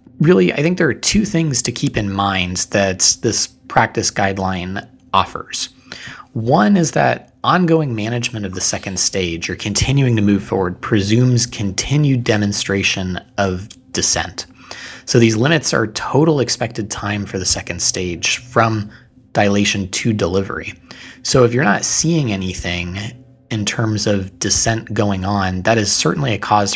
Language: English